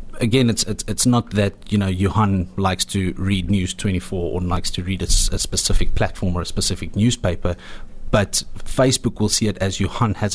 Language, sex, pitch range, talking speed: English, male, 95-115 Hz, 205 wpm